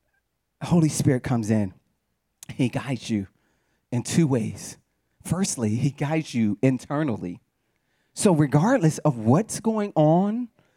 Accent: American